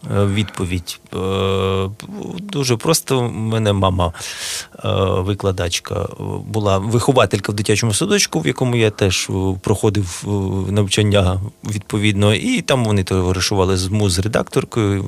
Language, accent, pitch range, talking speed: Ukrainian, native, 95-120 Hz, 100 wpm